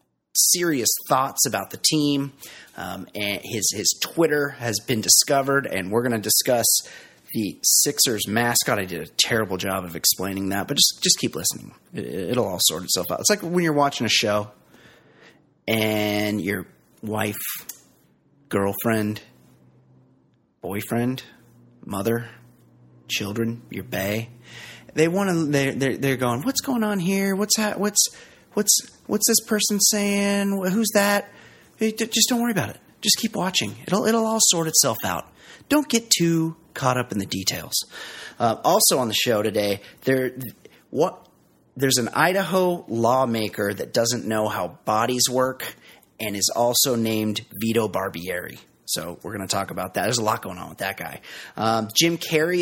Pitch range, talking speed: 105-175 Hz, 160 wpm